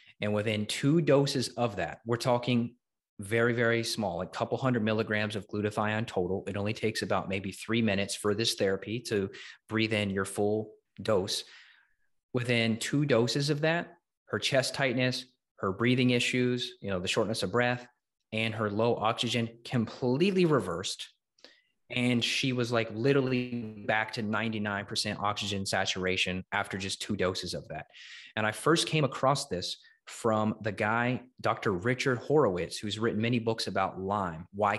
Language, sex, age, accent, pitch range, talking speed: English, male, 30-49, American, 100-120 Hz, 160 wpm